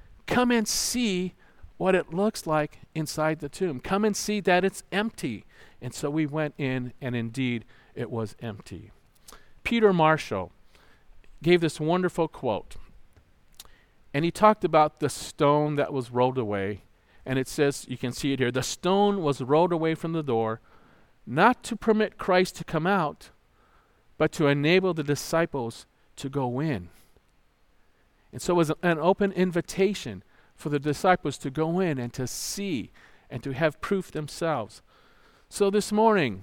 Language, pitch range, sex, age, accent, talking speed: English, 135-190 Hz, male, 50-69, American, 160 wpm